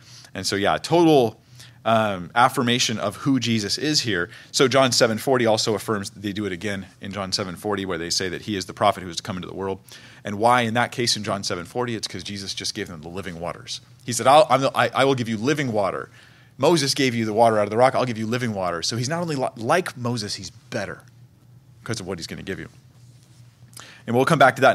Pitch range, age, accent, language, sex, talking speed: 105-130 Hz, 30-49, American, English, male, 245 wpm